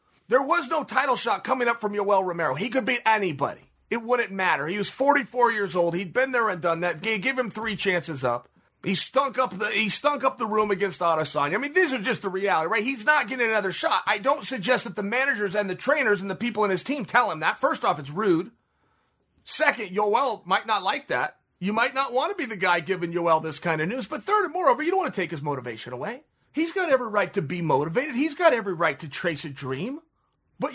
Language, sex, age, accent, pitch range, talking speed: English, male, 30-49, American, 195-295 Hz, 250 wpm